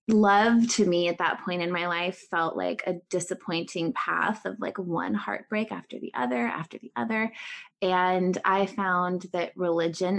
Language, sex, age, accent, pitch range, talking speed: English, female, 20-39, American, 175-210 Hz, 170 wpm